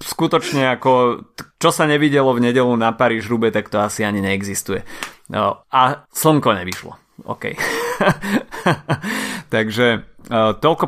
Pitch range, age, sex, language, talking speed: 110-130 Hz, 30-49, male, Slovak, 115 wpm